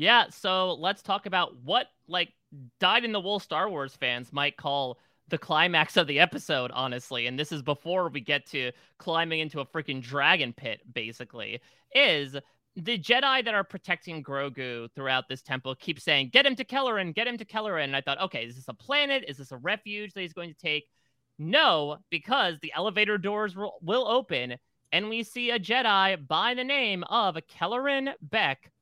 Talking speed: 190 wpm